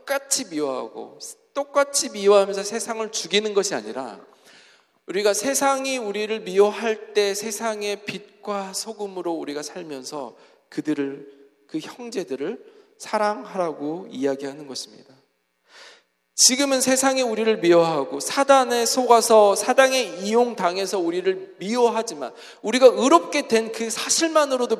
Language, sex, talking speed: English, male, 90 wpm